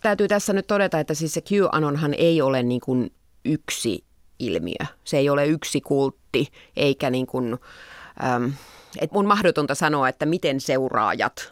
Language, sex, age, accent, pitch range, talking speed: Finnish, female, 30-49, native, 130-180 Hz, 150 wpm